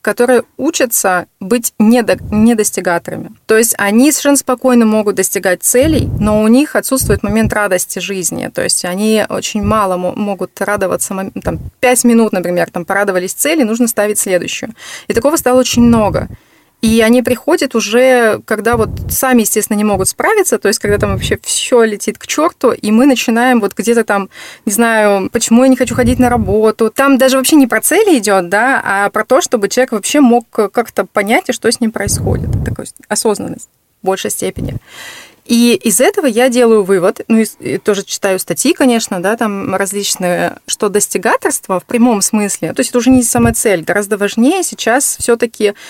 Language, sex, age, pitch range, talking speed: Russian, female, 20-39, 200-250 Hz, 175 wpm